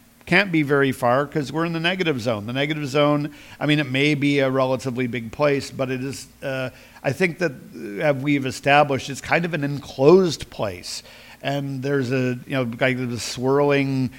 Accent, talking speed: American, 190 wpm